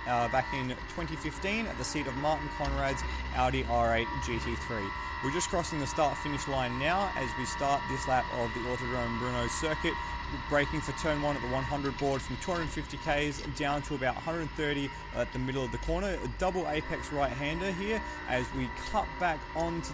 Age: 20-39